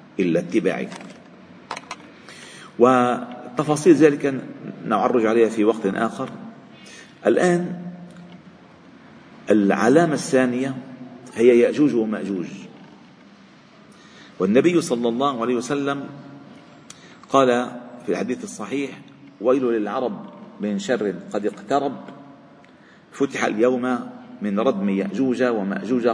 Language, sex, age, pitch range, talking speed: Arabic, male, 50-69, 120-165 Hz, 85 wpm